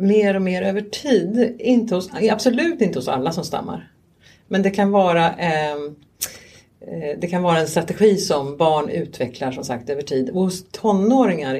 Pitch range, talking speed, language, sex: 155-210 Hz, 170 wpm, English, female